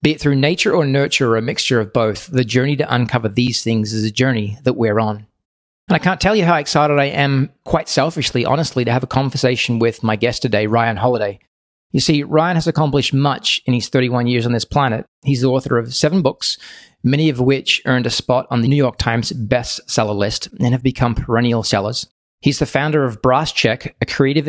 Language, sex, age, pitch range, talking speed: English, male, 30-49, 115-140 Hz, 220 wpm